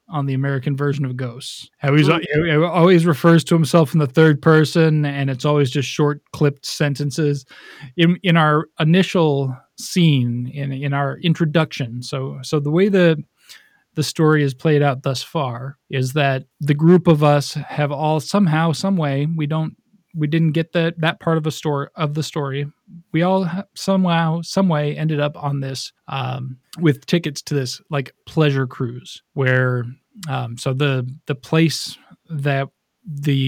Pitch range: 135-160 Hz